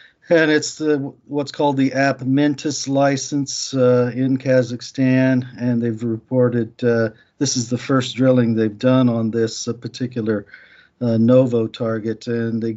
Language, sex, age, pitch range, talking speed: English, male, 50-69, 110-130 Hz, 140 wpm